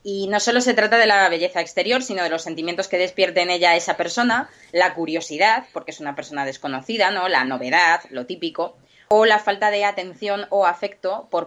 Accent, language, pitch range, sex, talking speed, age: Spanish, English, 155-185 Hz, female, 210 wpm, 20-39